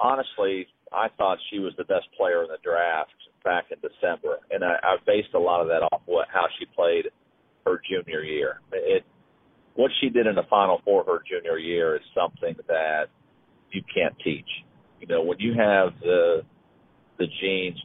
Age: 40-59